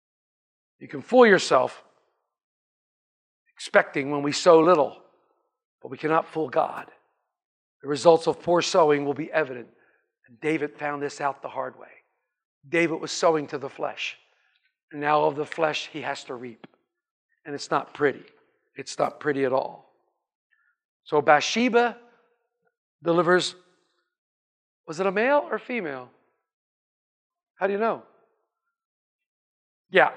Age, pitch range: 50-69, 160-245 Hz